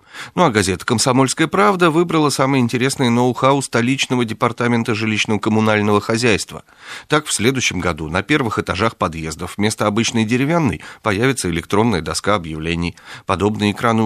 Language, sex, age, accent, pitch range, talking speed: Russian, male, 40-59, native, 90-120 Hz, 130 wpm